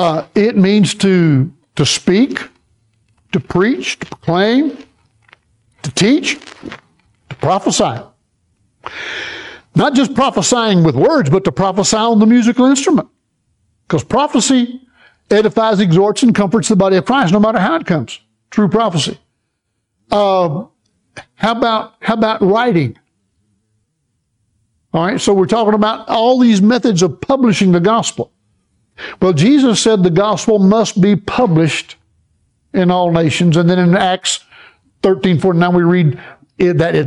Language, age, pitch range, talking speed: English, 60-79, 165-220 Hz, 135 wpm